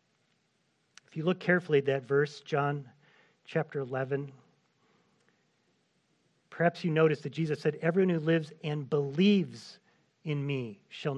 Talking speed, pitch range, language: 125 wpm, 140-175 Hz, English